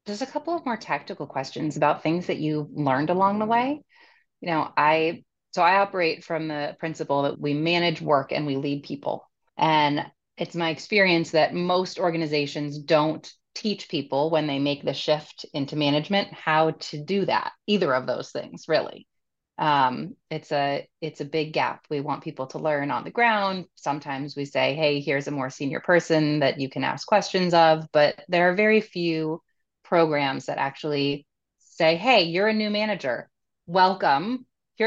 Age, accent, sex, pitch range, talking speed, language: 30-49, American, female, 150-195 Hz, 180 wpm, English